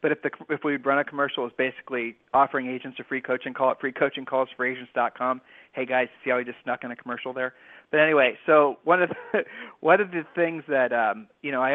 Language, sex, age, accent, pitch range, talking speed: English, male, 40-59, American, 135-170 Hz, 225 wpm